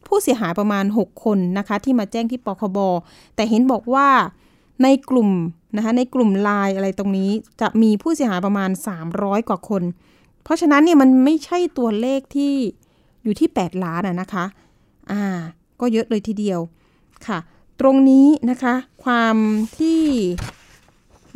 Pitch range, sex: 200-255 Hz, female